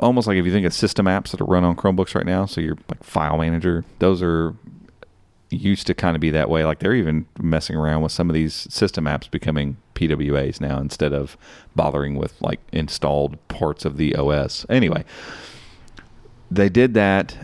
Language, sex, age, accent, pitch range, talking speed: English, male, 40-59, American, 75-95 Hz, 195 wpm